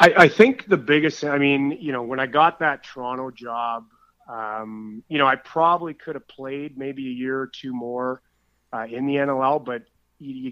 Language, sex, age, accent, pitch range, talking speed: English, male, 30-49, American, 120-140 Hz, 195 wpm